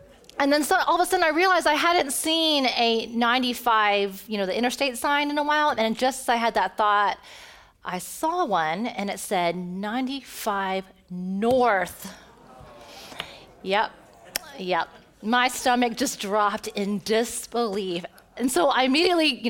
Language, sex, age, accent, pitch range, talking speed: English, female, 30-49, American, 220-305 Hz, 150 wpm